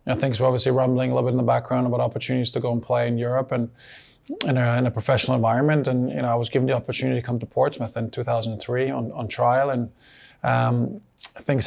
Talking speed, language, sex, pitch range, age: 240 wpm, English, male, 115-130 Hz, 20-39